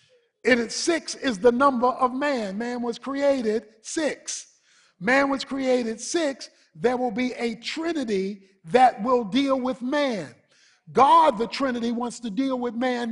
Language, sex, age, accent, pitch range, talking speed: English, male, 50-69, American, 220-265 Hz, 145 wpm